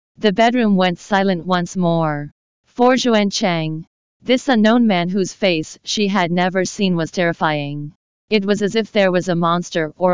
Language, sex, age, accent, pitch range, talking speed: English, female, 40-59, American, 165-205 Hz, 170 wpm